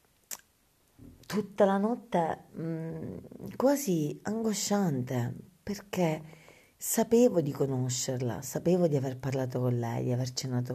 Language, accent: Italian, native